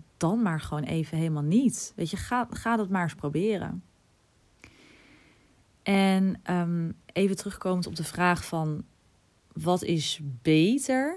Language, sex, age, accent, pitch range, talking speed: Dutch, female, 20-39, Dutch, 155-185 Hz, 130 wpm